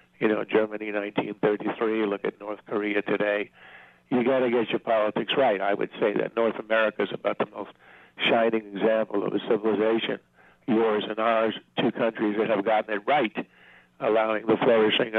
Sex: male